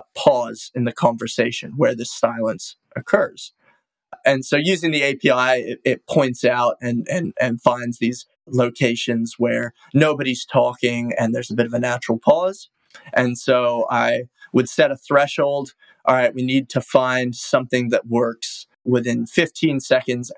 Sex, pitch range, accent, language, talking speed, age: male, 120-135 Hz, American, English, 155 wpm, 20-39